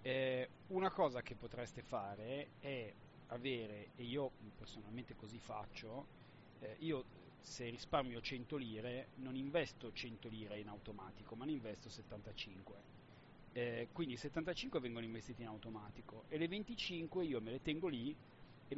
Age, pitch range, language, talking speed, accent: 40-59, 115-140 Hz, Italian, 145 wpm, native